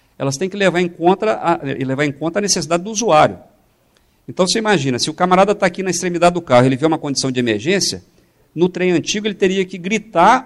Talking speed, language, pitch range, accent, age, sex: 210 wpm, Portuguese, 135-190 Hz, Brazilian, 50-69, male